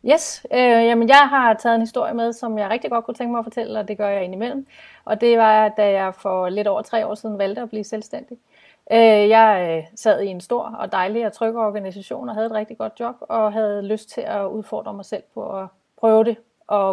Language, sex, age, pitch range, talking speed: Danish, female, 30-49, 195-230 Hz, 230 wpm